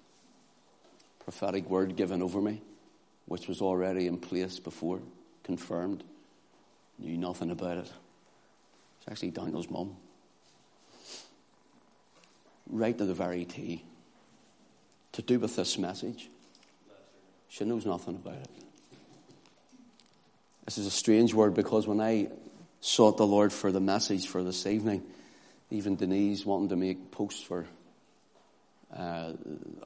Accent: British